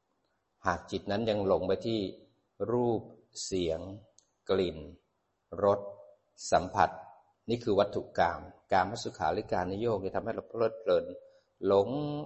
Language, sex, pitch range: Thai, male, 95-135 Hz